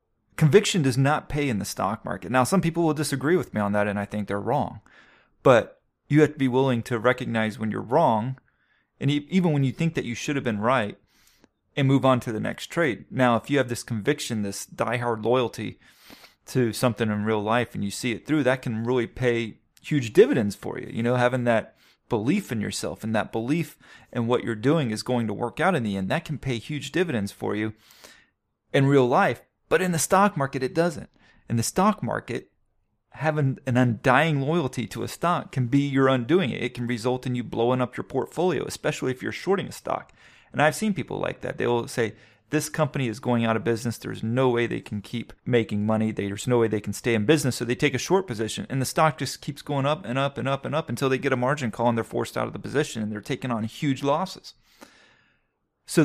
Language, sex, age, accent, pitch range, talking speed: English, male, 30-49, American, 115-145 Hz, 235 wpm